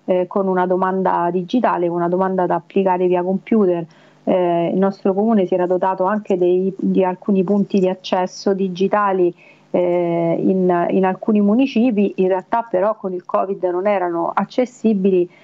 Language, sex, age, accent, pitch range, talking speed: Italian, female, 40-59, native, 180-210 Hz, 150 wpm